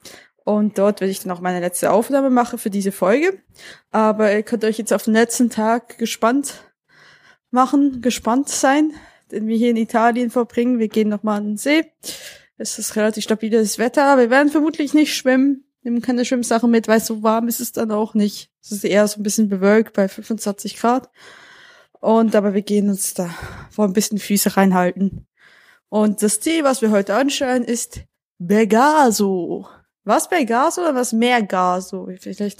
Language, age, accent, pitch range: German, 20-39, German, 205-270 Hz